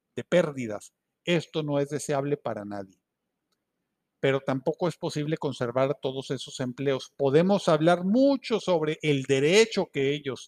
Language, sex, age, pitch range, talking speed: Spanish, male, 50-69, 135-175 Hz, 135 wpm